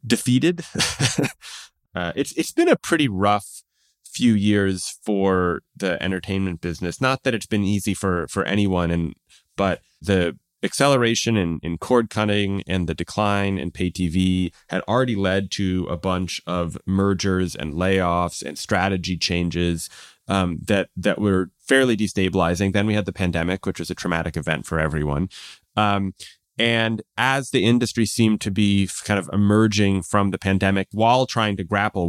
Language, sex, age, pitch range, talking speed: English, male, 30-49, 90-105 Hz, 160 wpm